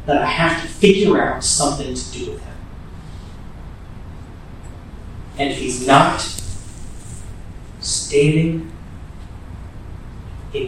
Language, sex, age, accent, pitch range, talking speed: English, male, 40-59, American, 85-120 Hz, 95 wpm